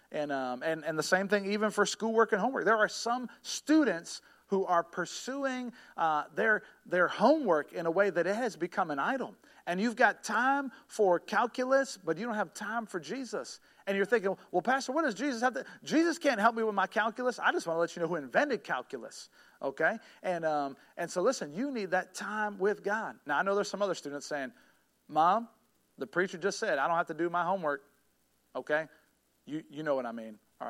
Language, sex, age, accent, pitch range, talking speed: English, male, 40-59, American, 150-215 Hz, 220 wpm